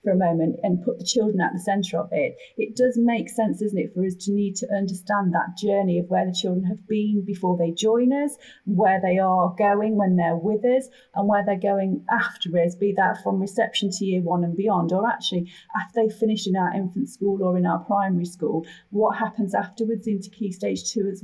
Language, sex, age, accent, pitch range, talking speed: English, female, 30-49, British, 180-215 Hz, 230 wpm